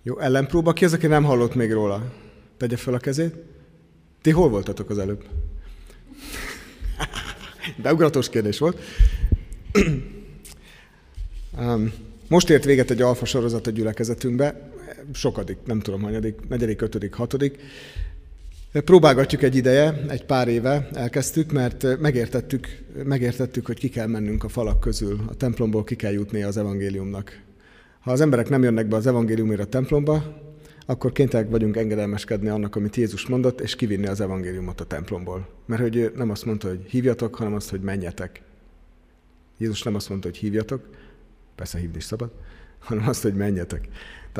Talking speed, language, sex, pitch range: 150 wpm, Hungarian, male, 100-130 Hz